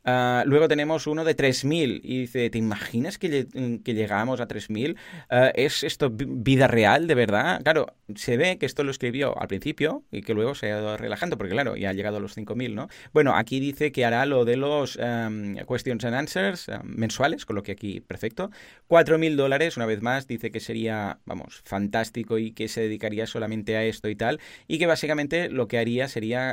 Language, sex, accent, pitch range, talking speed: Spanish, male, Spanish, 110-145 Hz, 200 wpm